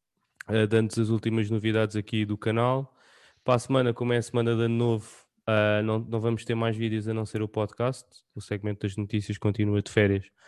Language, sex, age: English, male, 20-39